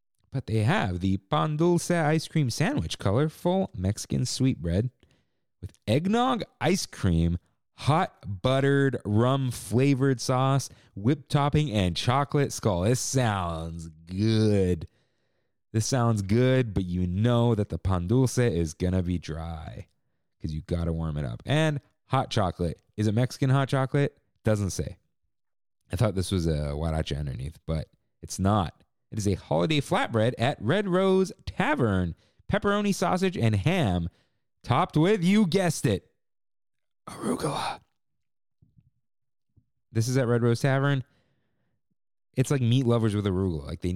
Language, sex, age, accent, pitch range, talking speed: English, male, 30-49, American, 95-135 Hz, 140 wpm